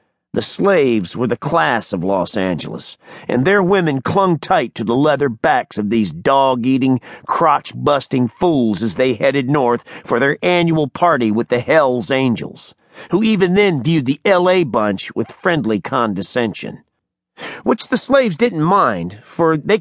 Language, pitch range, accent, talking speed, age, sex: English, 120-175 Hz, American, 155 wpm, 40-59, male